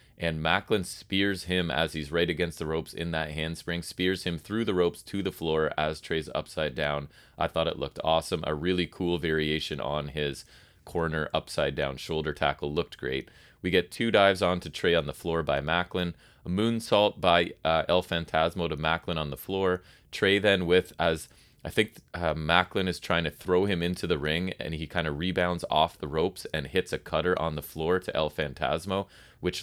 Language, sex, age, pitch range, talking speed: English, male, 30-49, 80-90 Hz, 205 wpm